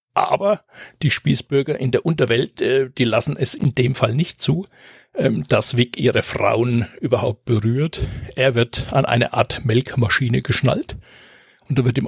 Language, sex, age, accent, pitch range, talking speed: German, male, 60-79, German, 120-135 Hz, 155 wpm